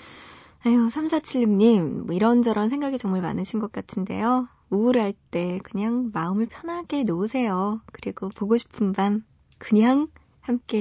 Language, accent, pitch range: Korean, native, 195-260 Hz